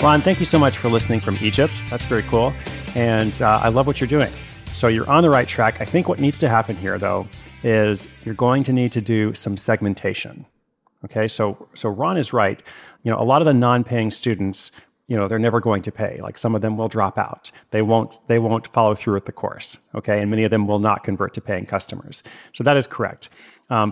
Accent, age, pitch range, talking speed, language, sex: American, 30-49, 105-135 Hz, 235 wpm, English, male